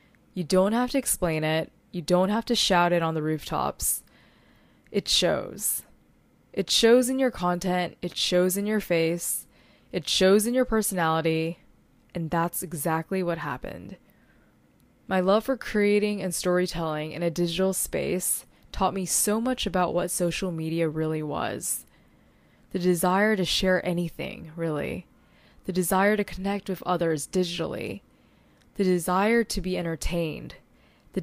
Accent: American